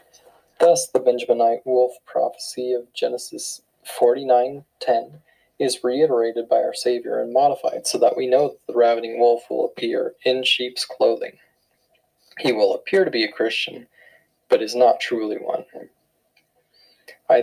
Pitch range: 120-175 Hz